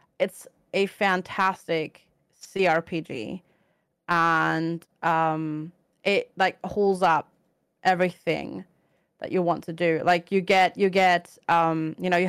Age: 30-49